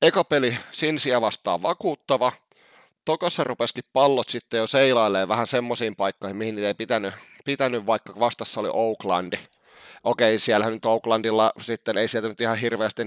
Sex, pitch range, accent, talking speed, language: male, 105-130 Hz, native, 150 wpm, Finnish